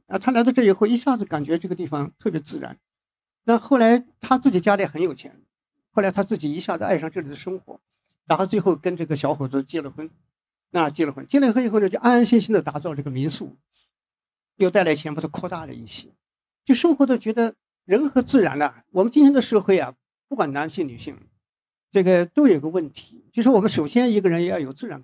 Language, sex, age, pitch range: Chinese, male, 50-69, 145-215 Hz